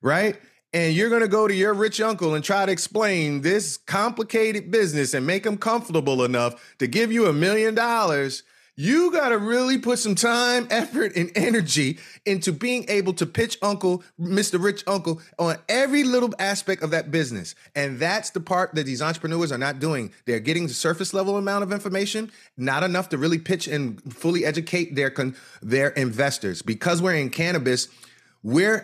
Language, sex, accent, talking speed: English, male, American, 185 wpm